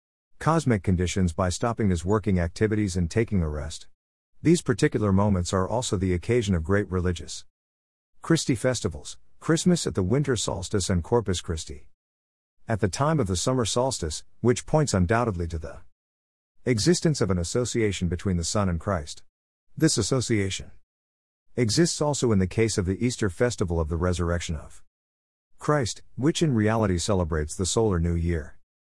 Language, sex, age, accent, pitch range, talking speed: English, male, 50-69, American, 85-115 Hz, 160 wpm